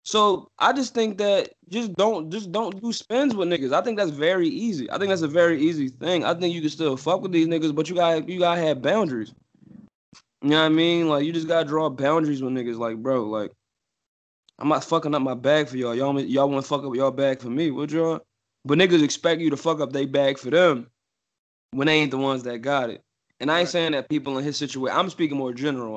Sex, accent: male, American